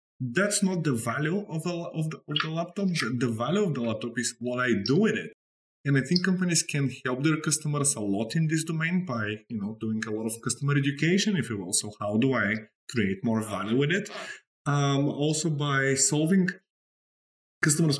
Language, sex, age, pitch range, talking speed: English, male, 20-39, 120-165 Hz, 205 wpm